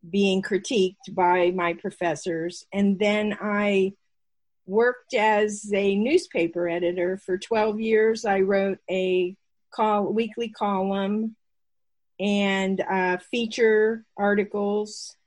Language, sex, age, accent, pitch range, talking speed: English, female, 50-69, American, 185-215 Hz, 100 wpm